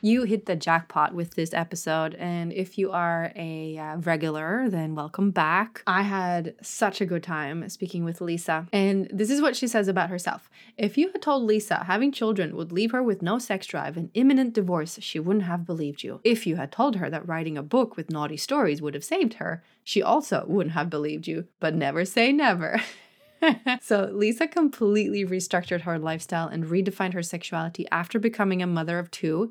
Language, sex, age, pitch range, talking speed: English, female, 20-39, 165-200 Hz, 200 wpm